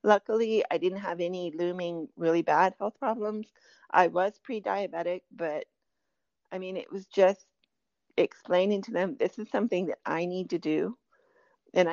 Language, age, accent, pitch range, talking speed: English, 40-59, American, 180-220 Hz, 155 wpm